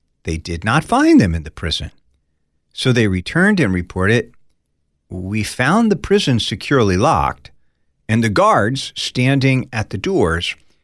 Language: English